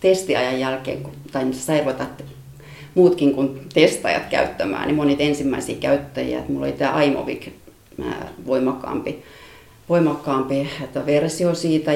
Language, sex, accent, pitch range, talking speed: Finnish, female, native, 135-150 Hz, 100 wpm